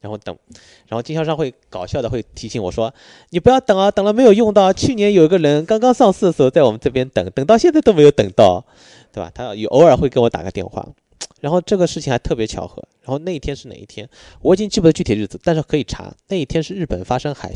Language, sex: Chinese, male